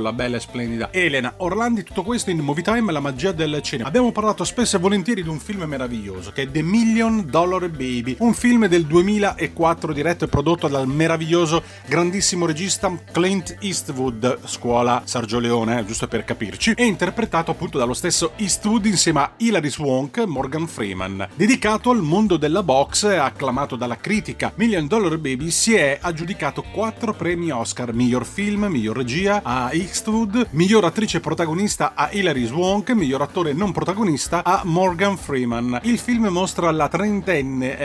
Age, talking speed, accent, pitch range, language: 30-49, 165 wpm, native, 135-200 Hz, Italian